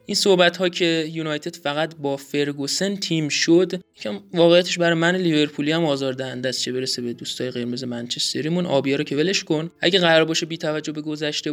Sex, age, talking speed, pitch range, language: male, 30-49, 165 wpm, 140-175 Hz, Persian